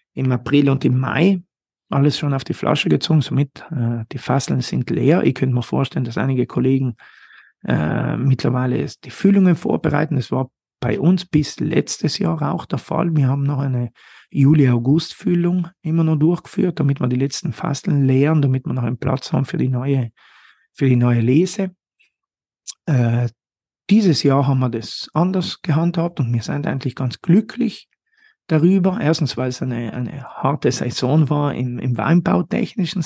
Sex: male